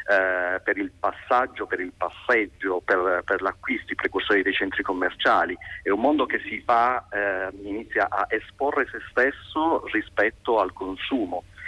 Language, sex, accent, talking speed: Italian, male, native, 150 wpm